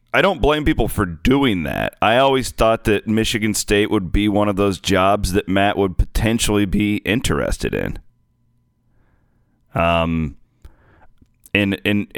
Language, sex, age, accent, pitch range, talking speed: English, male, 30-49, American, 95-115 Hz, 145 wpm